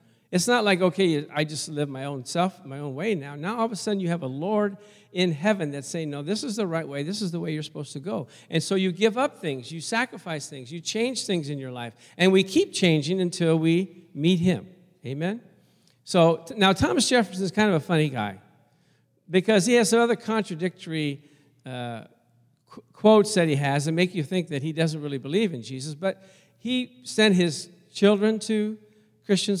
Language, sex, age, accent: English, male, 50-69, American